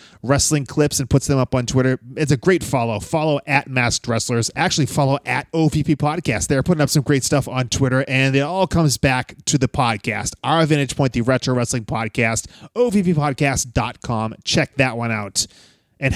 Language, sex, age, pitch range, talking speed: English, male, 30-49, 125-160 Hz, 185 wpm